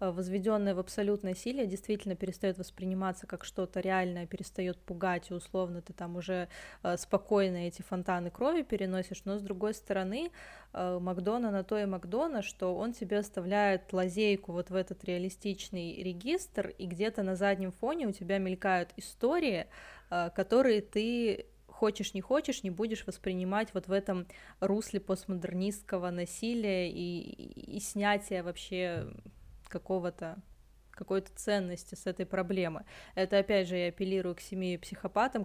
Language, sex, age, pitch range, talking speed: Russian, female, 20-39, 185-210 Hz, 140 wpm